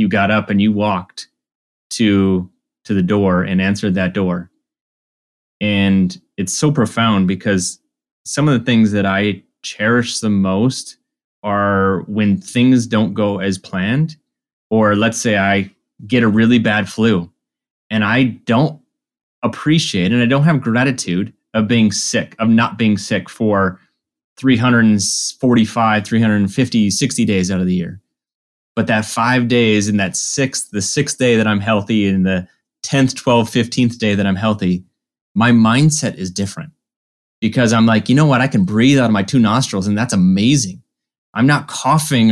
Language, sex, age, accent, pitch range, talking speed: English, male, 20-39, American, 100-125 Hz, 165 wpm